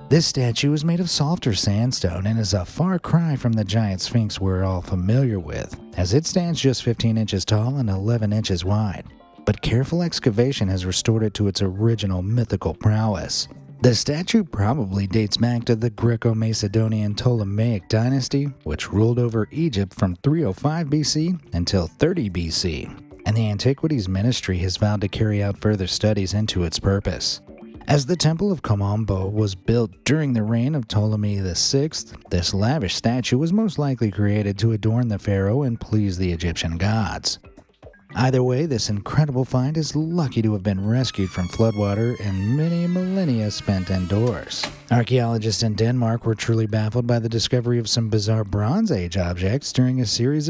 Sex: male